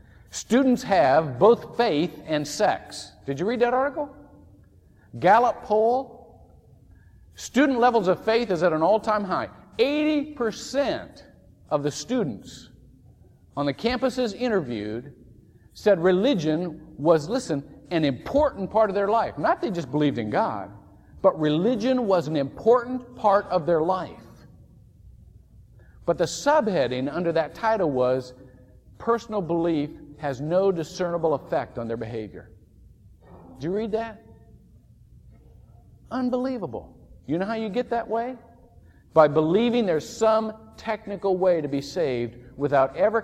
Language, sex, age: English, male, 50-69